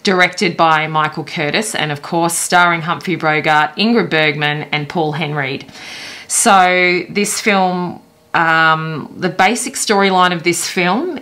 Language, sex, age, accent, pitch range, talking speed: English, female, 20-39, Australian, 155-185 Hz, 135 wpm